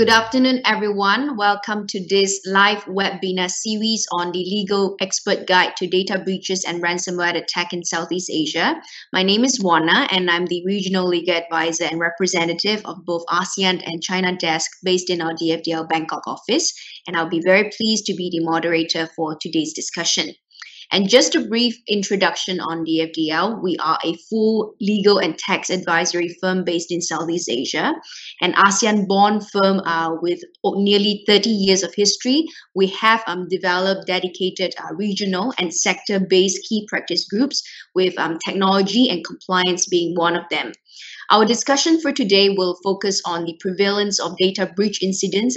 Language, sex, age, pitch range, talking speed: English, female, 20-39, 170-205 Hz, 160 wpm